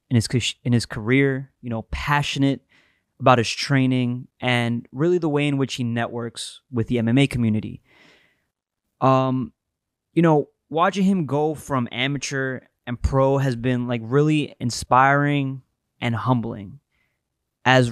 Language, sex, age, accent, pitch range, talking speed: English, male, 20-39, American, 120-140 Hz, 135 wpm